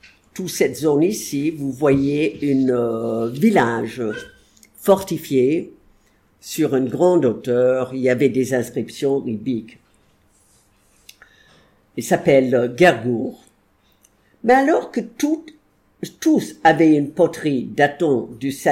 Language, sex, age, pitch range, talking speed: English, female, 50-69, 125-170 Hz, 105 wpm